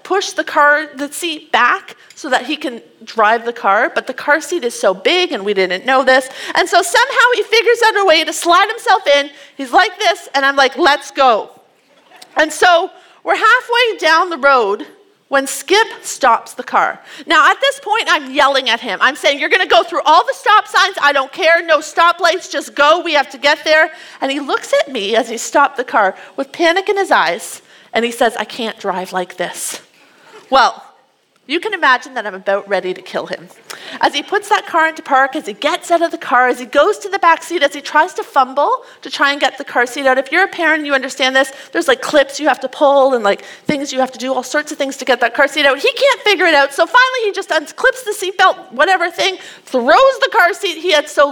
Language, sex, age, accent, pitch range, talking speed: English, female, 40-59, American, 260-355 Hz, 245 wpm